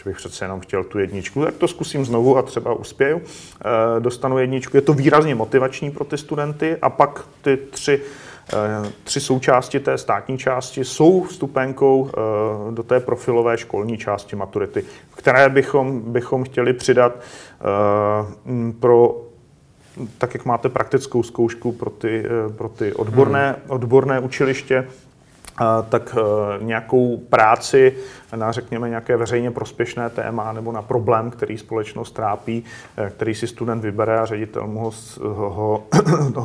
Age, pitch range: 40-59, 110-135 Hz